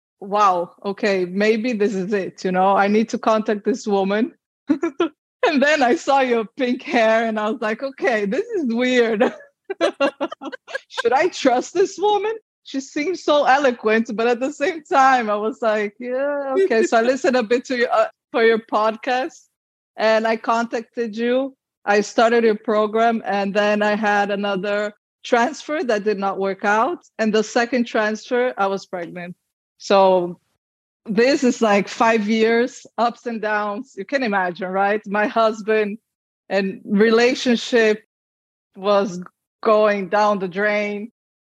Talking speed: 150 wpm